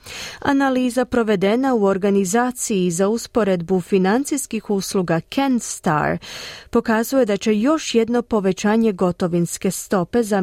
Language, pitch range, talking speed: Croatian, 170-235 Hz, 105 wpm